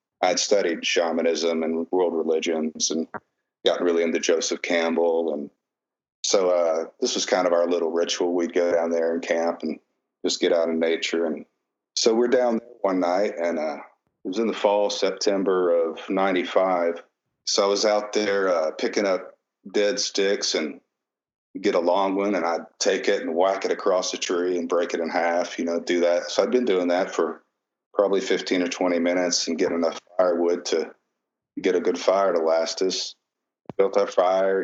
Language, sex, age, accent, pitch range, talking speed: English, male, 40-59, American, 85-95 Hz, 190 wpm